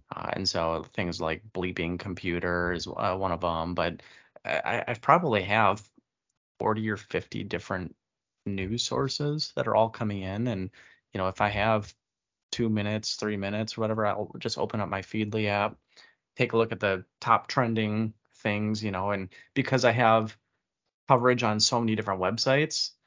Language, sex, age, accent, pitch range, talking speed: English, male, 30-49, American, 95-115 Hz, 170 wpm